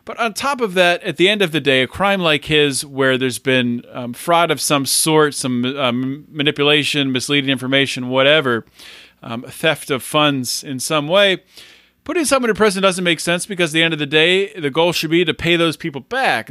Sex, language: male, English